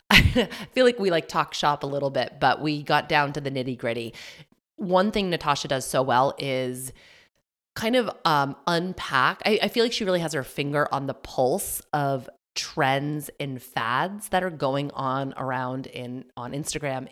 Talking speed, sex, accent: 185 wpm, female, American